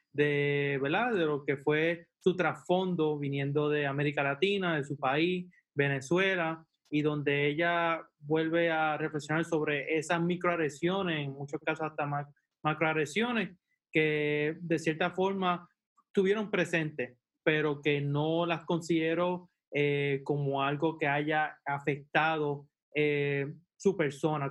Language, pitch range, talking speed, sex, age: English, 140-170 Hz, 120 wpm, male, 20-39